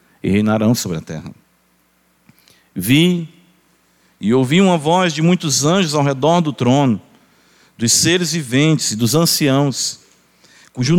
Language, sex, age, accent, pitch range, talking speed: Portuguese, male, 50-69, Brazilian, 110-155 Hz, 130 wpm